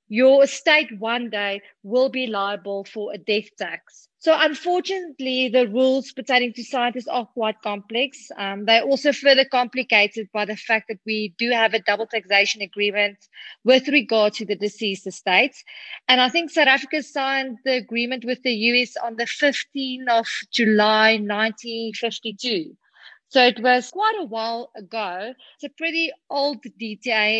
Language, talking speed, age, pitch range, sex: English, 160 wpm, 30-49, 215-265 Hz, female